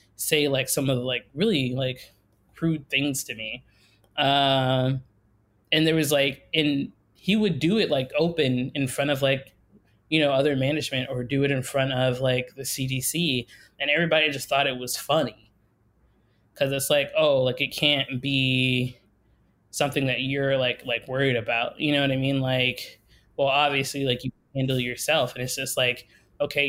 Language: English